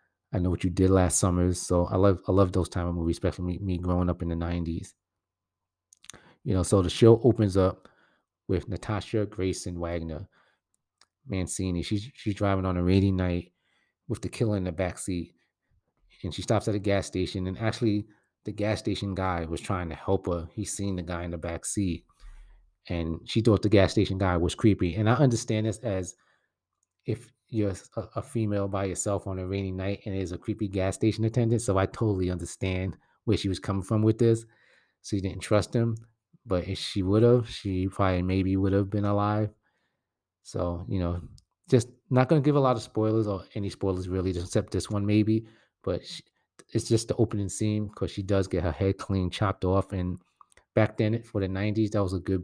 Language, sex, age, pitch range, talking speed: English, male, 30-49, 90-110 Hz, 210 wpm